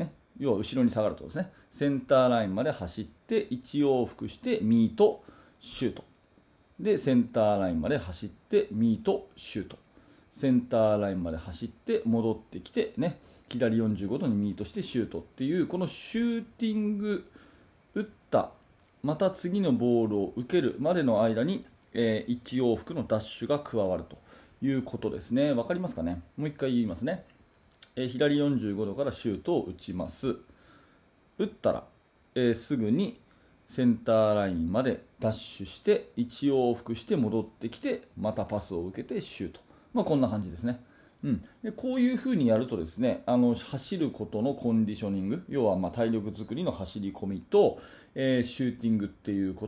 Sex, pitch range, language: male, 105-145 Hz, Japanese